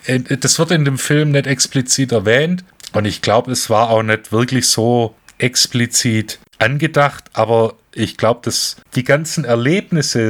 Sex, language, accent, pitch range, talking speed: male, German, German, 110-135 Hz, 150 wpm